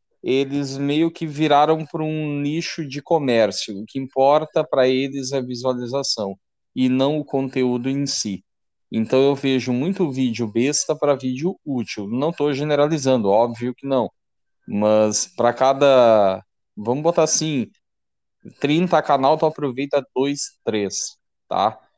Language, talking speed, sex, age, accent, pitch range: Portuguese, 140 wpm, male, 20-39, Brazilian, 115-150 Hz